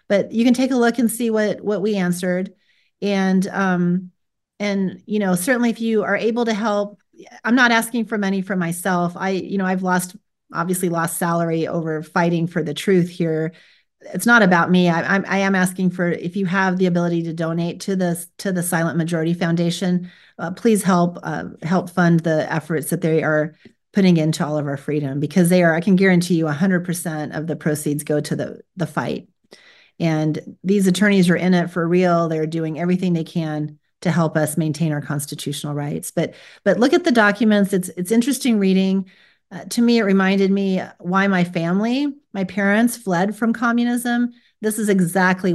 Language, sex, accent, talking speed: English, female, American, 200 wpm